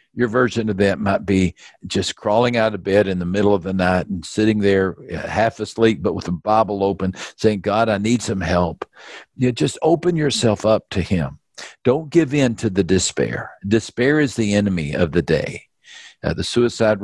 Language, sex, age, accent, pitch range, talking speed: English, male, 50-69, American, 95-115 Hz, 200 wpm